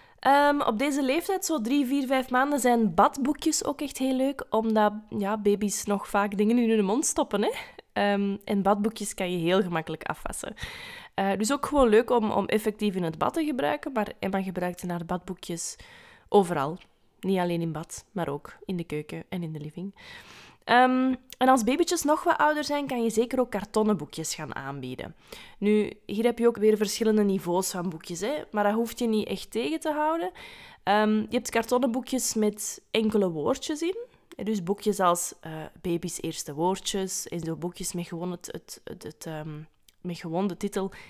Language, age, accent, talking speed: Dutch, 20-39, Belgian, 190 wpm